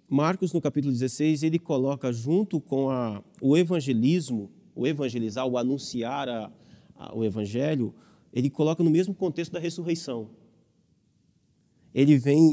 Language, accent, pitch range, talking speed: Portuguese, Brazilian, 130-180 Hz, 135 wpm